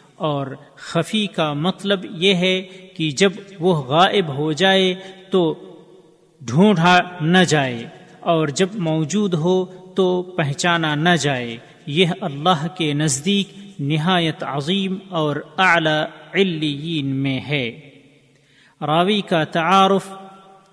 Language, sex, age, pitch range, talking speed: Urdu, male, 40-59, 155-190 Hz, 105 wpm